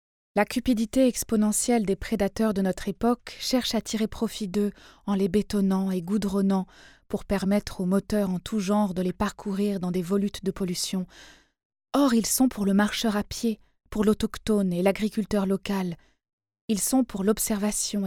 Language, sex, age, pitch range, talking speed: French, female, 20-39, 190-220 Hz, 165 wpm